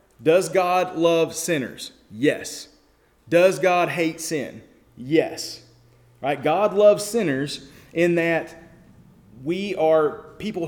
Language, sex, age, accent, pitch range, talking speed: English, male, 30-49, American, 155-185 Hz, 105 wpm